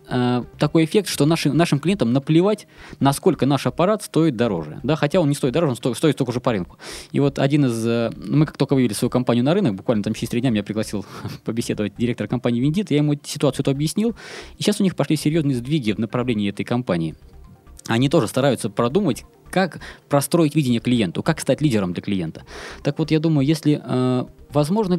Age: 20-39